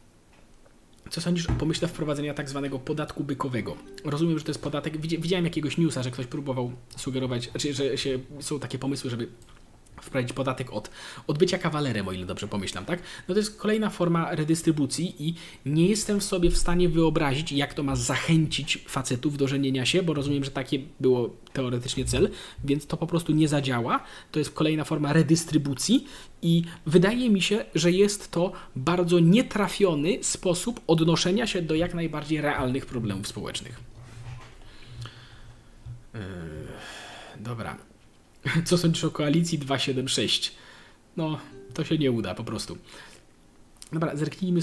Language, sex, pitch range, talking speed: Polish, male, 120-165 Hz, 150 wpm